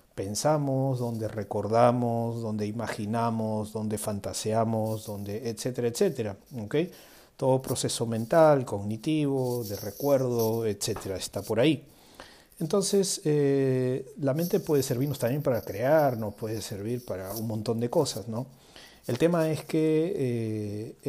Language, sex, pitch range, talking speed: Spanish, male, 115-145 Hz, 125 wpm